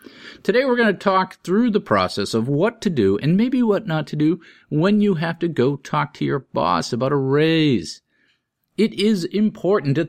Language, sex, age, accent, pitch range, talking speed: English, male, 50-69, American, 115-185 Hz, 200 wpm